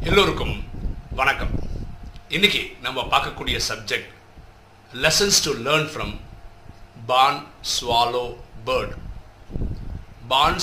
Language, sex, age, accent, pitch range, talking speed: Tamil, male, 50-69, native, 100-140 Hz, 80 wpm